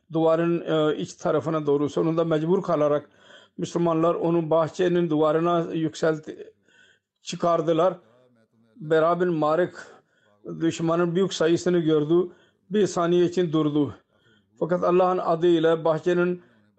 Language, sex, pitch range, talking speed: Turkish, male, 155-175 Hz, 95 wpm